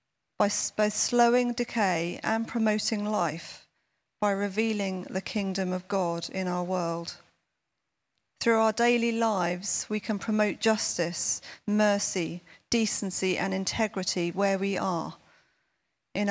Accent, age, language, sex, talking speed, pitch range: British, 40-59, English, female, 120 wpm, 190-230 Hz